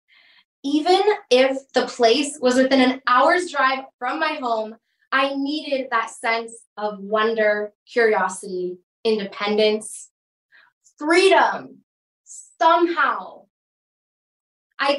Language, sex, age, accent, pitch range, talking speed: English, female, 20-39, American, 250-350 Hz, 90 wpm